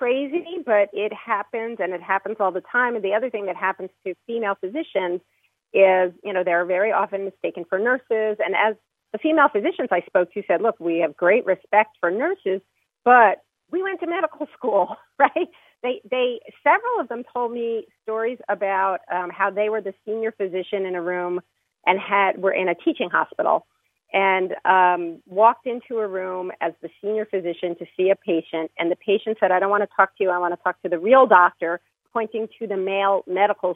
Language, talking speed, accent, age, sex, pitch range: English, 205 wpm, American, 40-59, female, 180-220 Hz